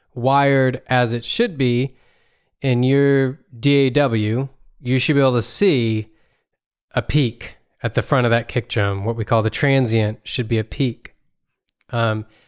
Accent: American